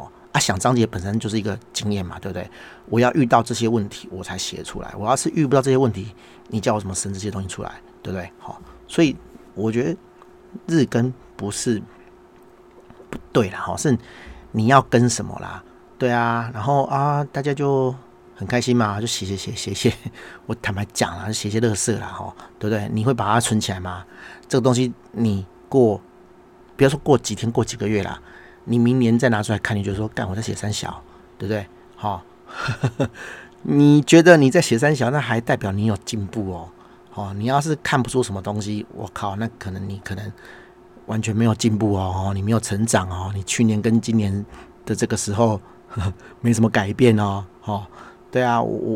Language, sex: Chinese, male